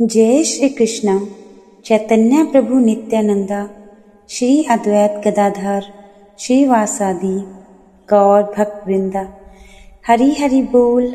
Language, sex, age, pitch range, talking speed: Hindi, female, 20-39, 200-225 Hz, 85 wpm